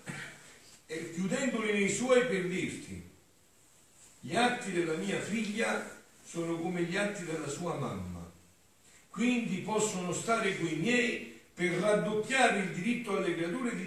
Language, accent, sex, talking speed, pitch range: Italian, native, male, 125 wpm, 115-180 Hz